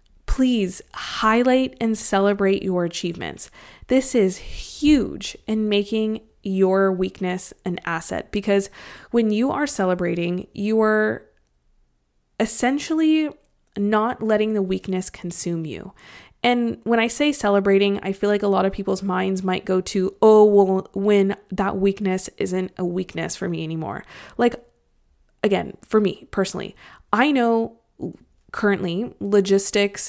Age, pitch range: 20-39, 185-220 Hz